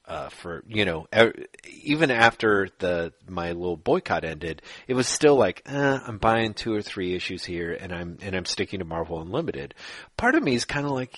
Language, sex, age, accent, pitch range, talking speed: English, male, 30-49, American, 90-140 Hz, 210 wpm